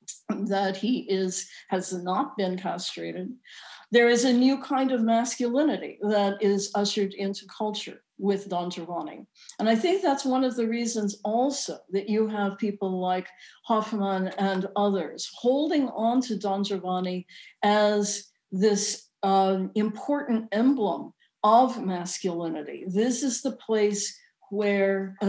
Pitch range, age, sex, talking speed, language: 195-245 Hz, 50-69, female, 135 wpm, English